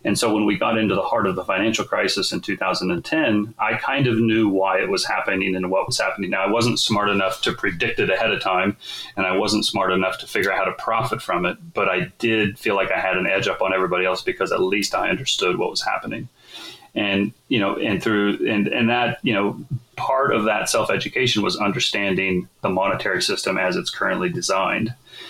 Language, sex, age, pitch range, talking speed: English, male, 30-49, 95-110 Hz, 225 wpm